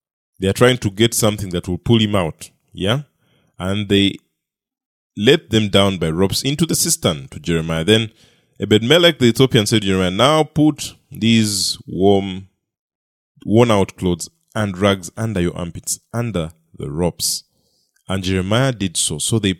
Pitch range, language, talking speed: 95-135 Hz, English, 155 wpm